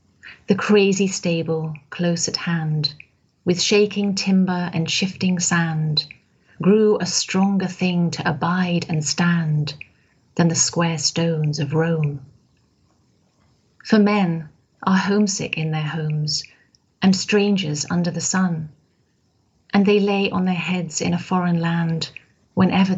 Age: 40-59